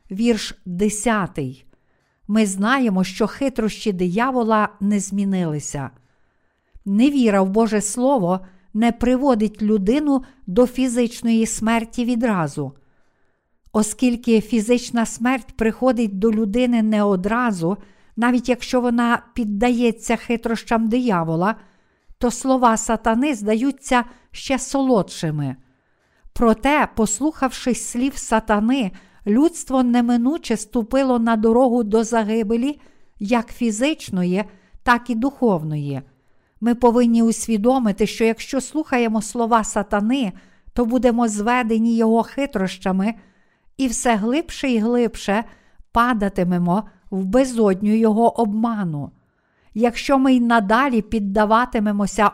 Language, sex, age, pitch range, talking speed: Ukrainian, female, 50-69, 210-245 Hz, 95 wpm